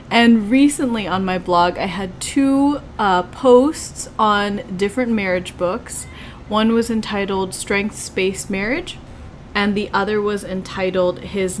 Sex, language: female, English